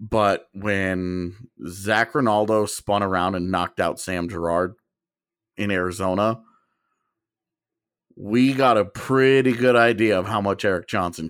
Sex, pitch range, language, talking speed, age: male, 95-120 Hz, English, 125 wpm, 30-49